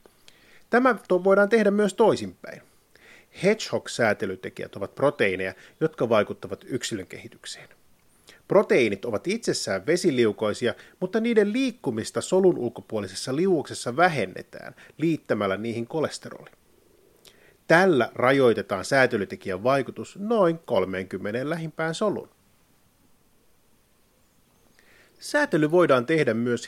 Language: Finnish